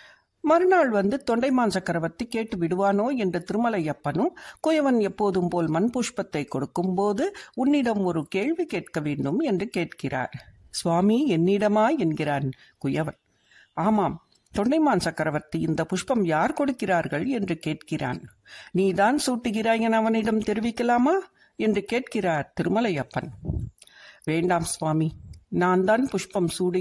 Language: English